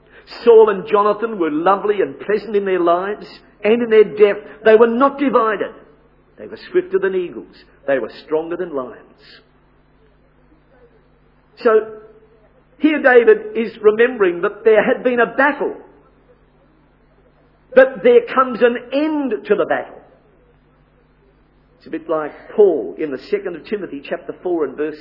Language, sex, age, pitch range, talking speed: English, male, 50-69, 185-265 Hz, 145 wpm